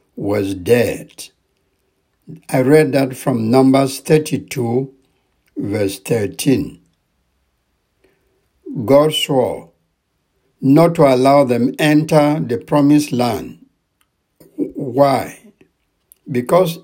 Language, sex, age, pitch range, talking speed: English, male, 60-79, 120-155 Hz, 80 wpm